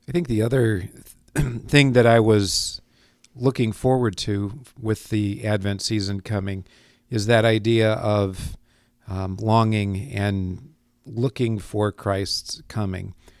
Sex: male